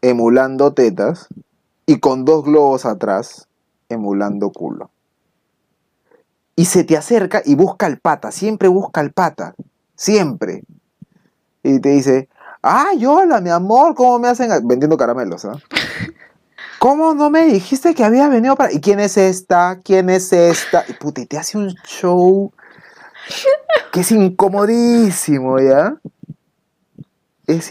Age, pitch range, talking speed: 30-49, 130-215 Hz, 135 wpm